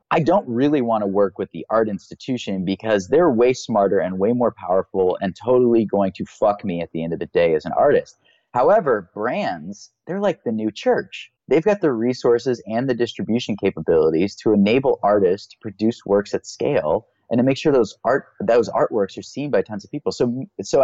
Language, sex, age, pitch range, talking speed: English, male, 30-49, 95-135 Hz, 205 wpm